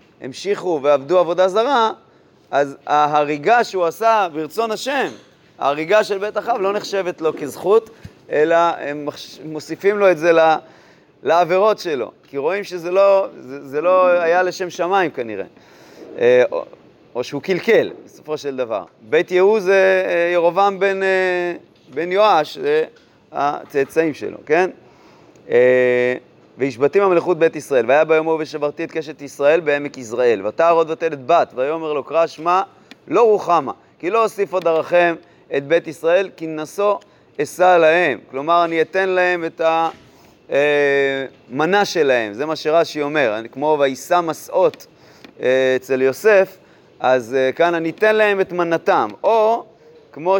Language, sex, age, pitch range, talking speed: Hebrew, male, 30-49, 150-195 Hz, 130 wpm